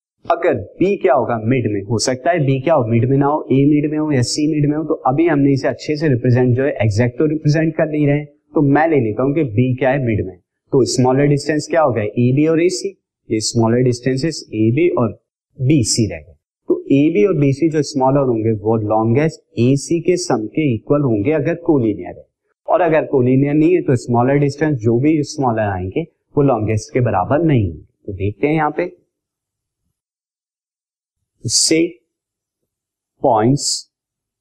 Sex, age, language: male, 30-49, Hindi